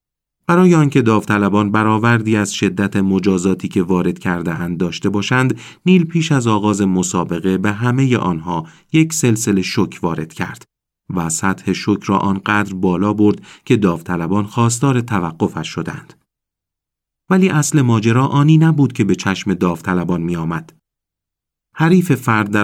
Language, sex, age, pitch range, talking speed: Persian, male, 40-59, 95-125 Hz, 135 wpm